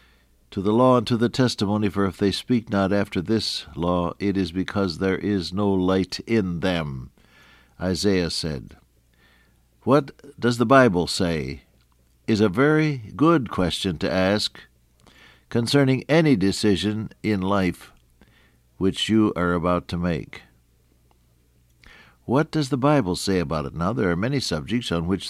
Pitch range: 80-110 Hz